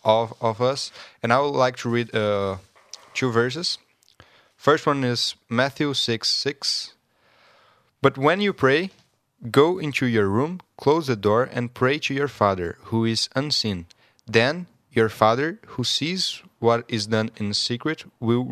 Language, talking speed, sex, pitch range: English, 150 wpm, male, 110-135 Hz